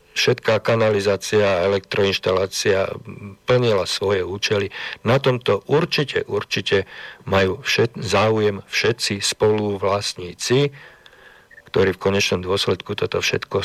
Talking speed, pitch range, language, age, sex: 90 wpm, 100-115 Hz, Slovak, 50-69, male